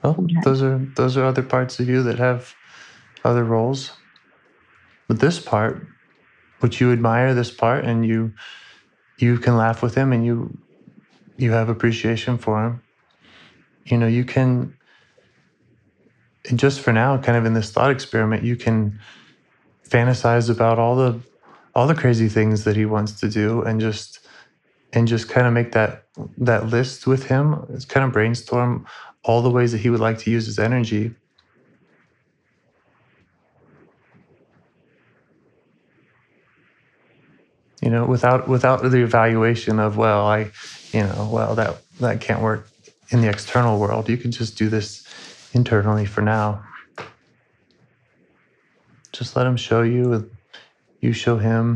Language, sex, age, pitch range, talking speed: English, male, 30-49, 110-125 Hz, 145 wpm